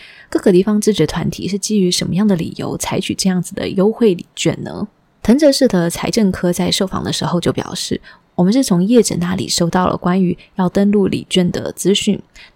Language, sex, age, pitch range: Chinese, female, 20-39, 180-210 Hz